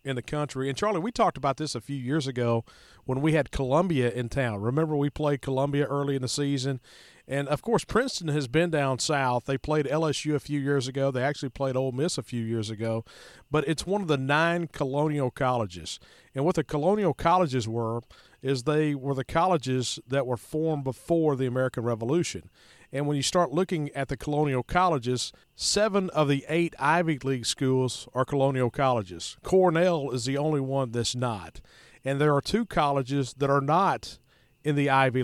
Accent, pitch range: American, 125-155 Hz